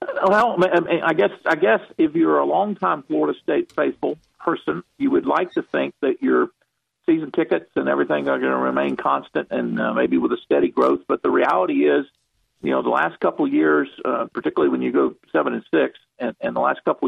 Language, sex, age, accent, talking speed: English, male, 50-69, American, 205 wpm